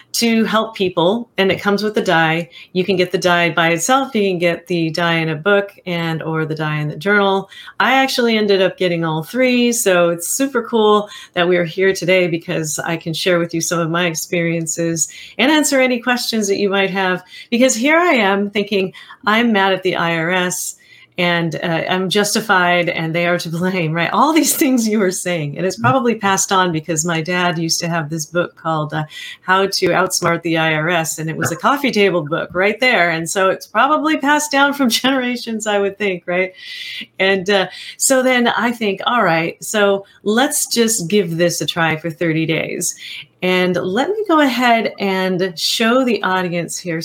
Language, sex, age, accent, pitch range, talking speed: English, female, 30-49, American, 170-225 Hz, 205 wpm